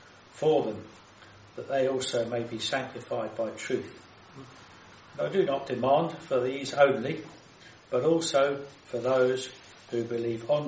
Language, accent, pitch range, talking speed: English, British, 115-145 Hz, 135 wpm